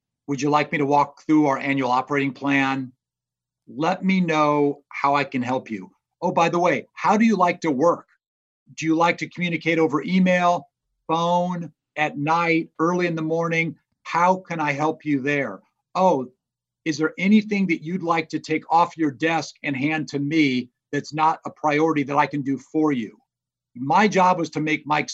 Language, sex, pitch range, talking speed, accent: English, male, 135-170 Hz, 195 wpm, American